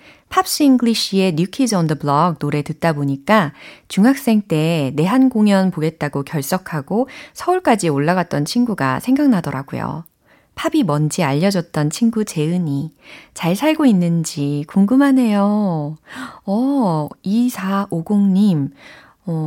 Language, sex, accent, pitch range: Korean, female, native, 155-230 Hz